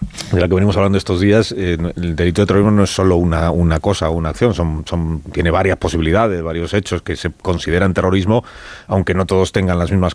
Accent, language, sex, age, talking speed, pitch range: Spanish, Spanish, male, 30-49, 225 wpm, 85-100 Hz